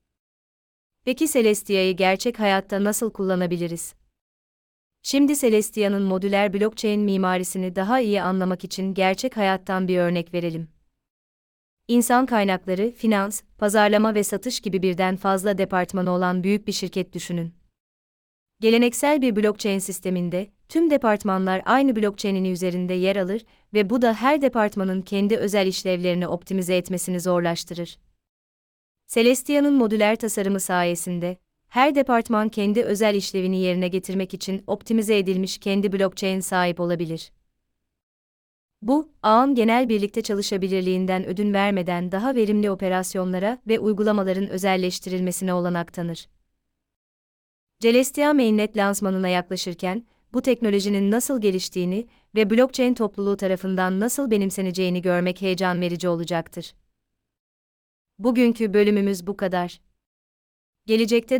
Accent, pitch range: native, 180-215 Hz